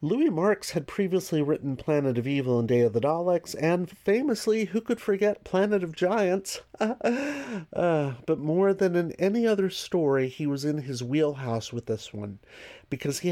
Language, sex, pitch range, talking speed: English, male, 120-170 Hz, 175 wpm